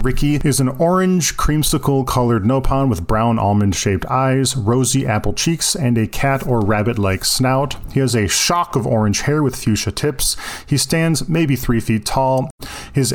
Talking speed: 180 wpm